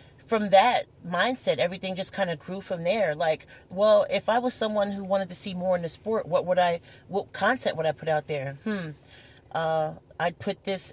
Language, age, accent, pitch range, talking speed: English, 40-59, American, 155-195 Hz, 215 wpm